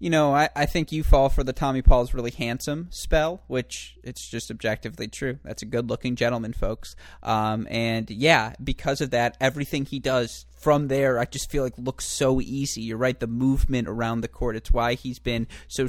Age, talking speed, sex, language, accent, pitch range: 20-39, 205 wpm, male, English, American, 110-130 Hz